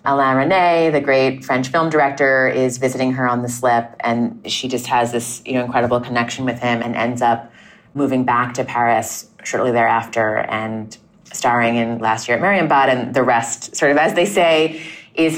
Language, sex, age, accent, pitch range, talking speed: English, female, 30-49, American, 120-140 Hz, 190 wpm